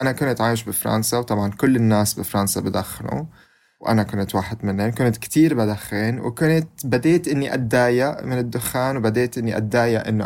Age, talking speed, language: 20-39, 150 wpm, Arabic